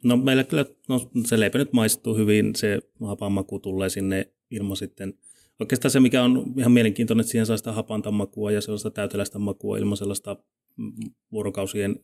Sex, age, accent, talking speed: male, 30-49, native, 160 wpm